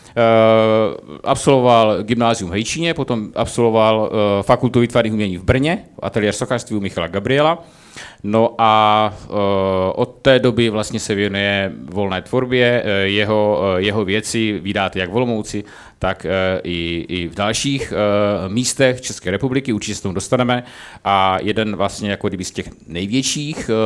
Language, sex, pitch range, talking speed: Czech, male, 95-120 Hz, 135 wpm